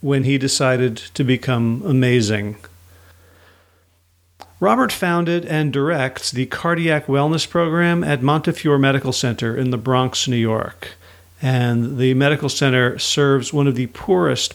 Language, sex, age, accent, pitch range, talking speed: English, male, 50-69, American, 120-155 Hz, 130 wpm